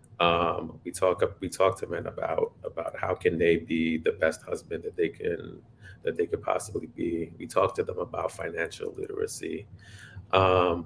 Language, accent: English, American